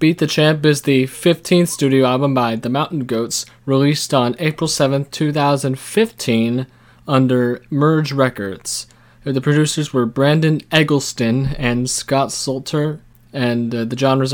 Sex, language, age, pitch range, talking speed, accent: male, English, 20-39, 120-145 Hz, 135 wpm, American